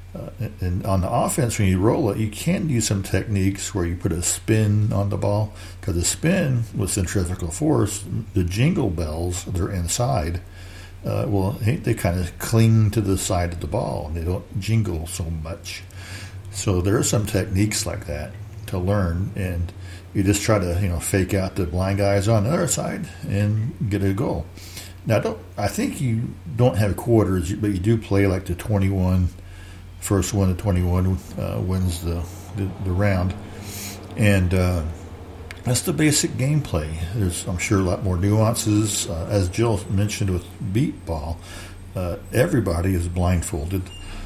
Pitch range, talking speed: 90-105 Hz, 175 wpm